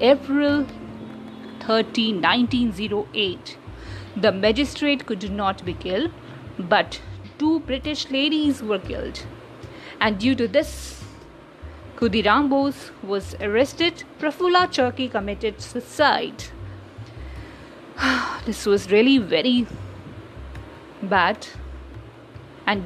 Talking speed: 85 wpm